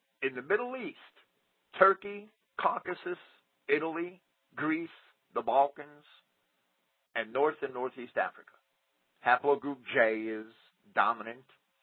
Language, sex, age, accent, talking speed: English, male, 50-69, American, 95 wpm